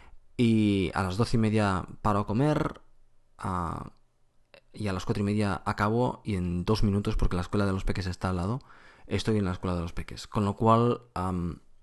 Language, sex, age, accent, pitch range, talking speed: Spanish, male, 20-39, Spanish, 95-110 Hz, 210 wpm